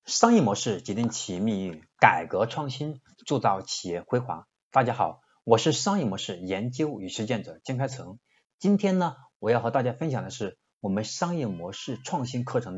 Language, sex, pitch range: Chinese, male, 110-165 Hz